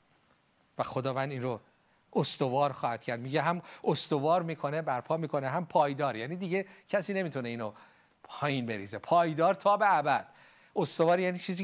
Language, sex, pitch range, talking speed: Persian, male, 120-150 Hz, 150 wpm